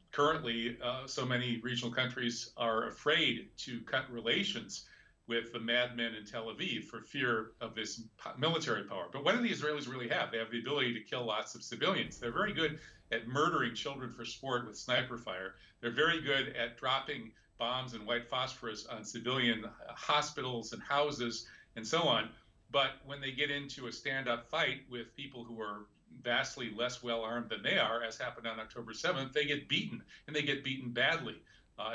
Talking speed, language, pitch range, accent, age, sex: 185 wpm, English, 115-130 Hz, American, 50-69, male